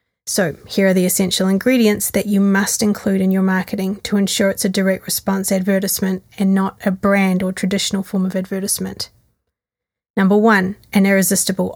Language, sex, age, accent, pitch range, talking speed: English, female, 30-49, Australian, 185-210 Hz, 170 wpm